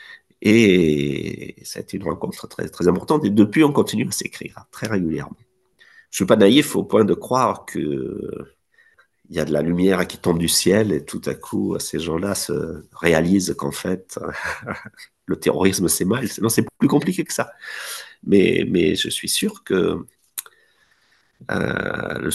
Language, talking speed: French, 165 wpm